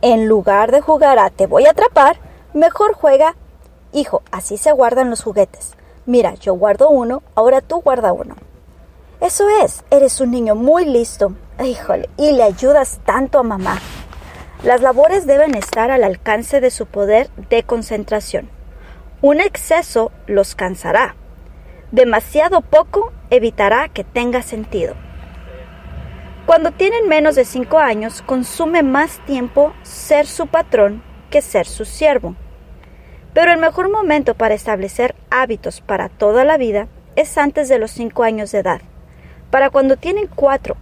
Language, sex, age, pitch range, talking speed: Spanish, female, 30-49, 220-295 Hz, 145 wpm